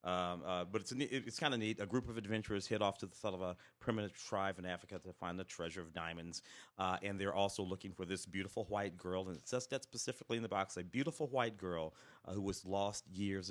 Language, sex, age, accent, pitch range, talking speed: English, male, 40-59, American, 90-125 Hz, 255 wpm